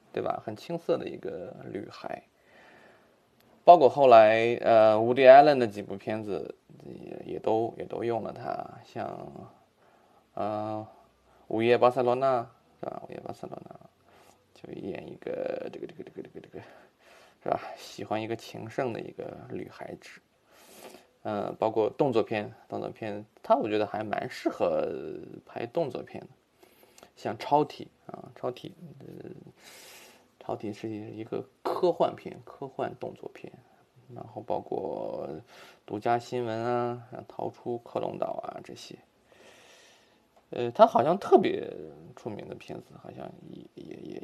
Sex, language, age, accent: male, Chinese, 20-39, native